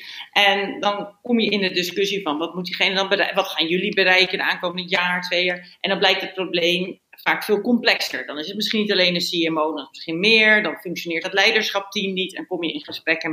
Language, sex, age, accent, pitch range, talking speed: Dutch, female, 40-59, Dutch, 170-210 Hz, 240 wpm